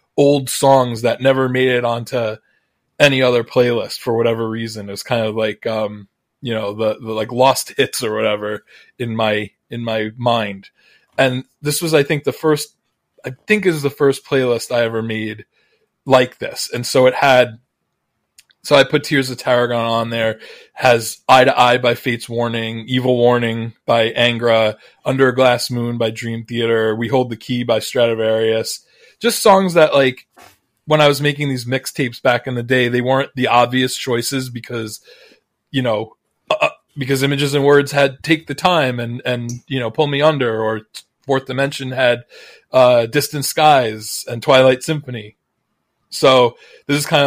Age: 20-39